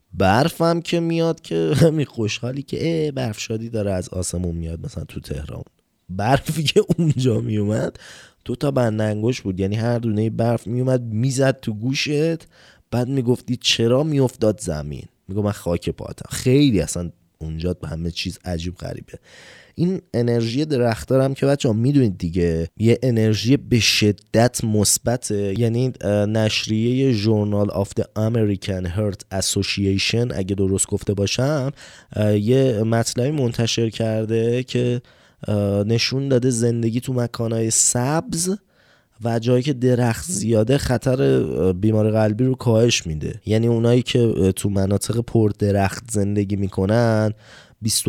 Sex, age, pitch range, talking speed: male, 20-39, 100-130 Hz, 125 wpm